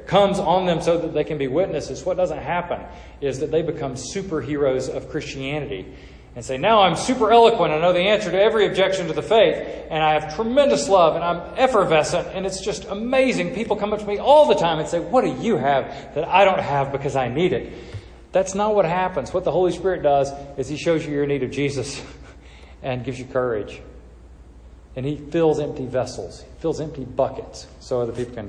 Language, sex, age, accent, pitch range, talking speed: English, male, 40-59, American, 120-175 Hz, 215 wpm